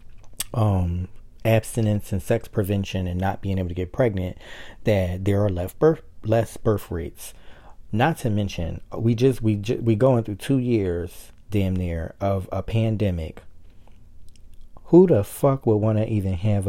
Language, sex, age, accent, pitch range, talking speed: English, male, 40-59, American, 90-110 Hz, 160 wpm